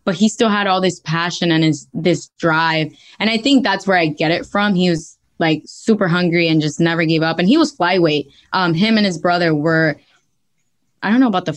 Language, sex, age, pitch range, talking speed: English, female, 10-29, 165-210 Hz, 235 wpm